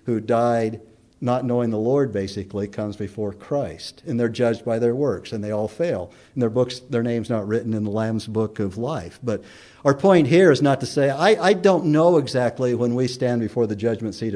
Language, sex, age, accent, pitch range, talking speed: English, male, 50-69, American, 115-170 Hz, 215 wpm